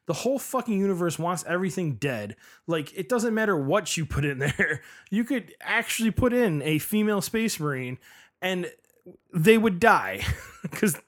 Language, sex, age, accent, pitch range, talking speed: English, male, 20-39, American, 155-210 Hz, 160 wpm